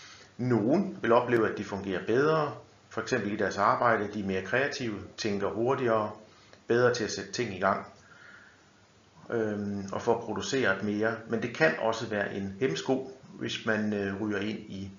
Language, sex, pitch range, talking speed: Danish, male, 100-115 Hz, 170 wpm